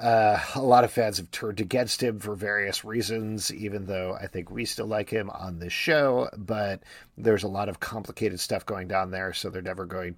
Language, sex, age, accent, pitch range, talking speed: English, male, 40-59, American, 100-130 Hz, 220 wpm